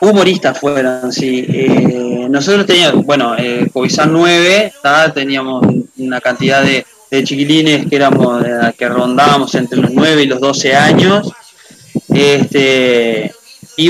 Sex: male